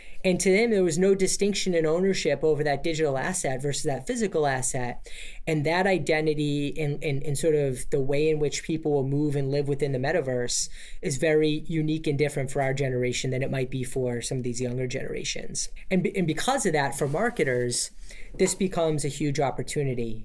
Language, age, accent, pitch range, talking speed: English, 30-49, American, 140-170 Hz, 195 wpm